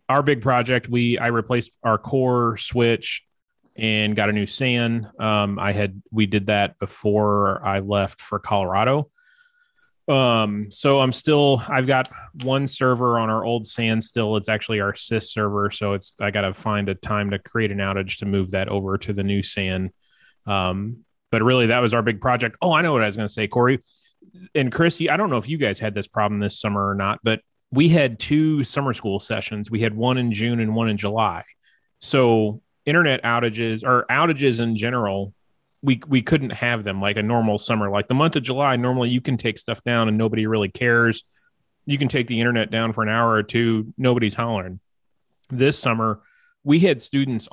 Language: English